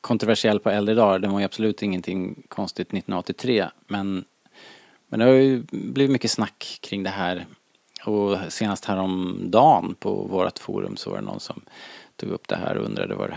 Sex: male